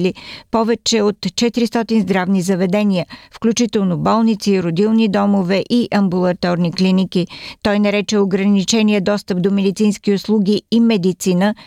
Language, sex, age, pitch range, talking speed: Bulgarian, female, 50-69, 180-220 Hz, 110 wpm